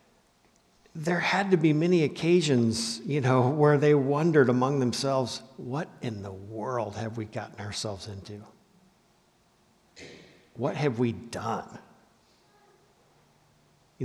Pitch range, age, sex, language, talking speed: 125-175 Hz, 50-69, male, English, 115 wpm